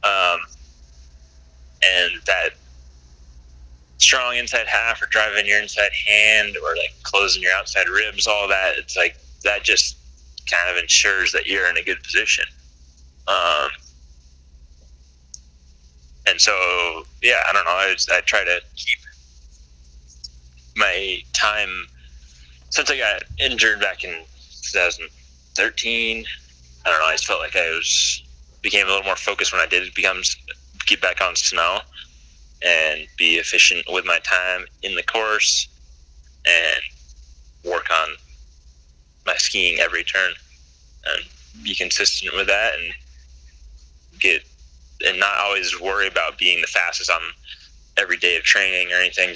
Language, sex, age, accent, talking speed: English, male, 20-39, American, 140 wpm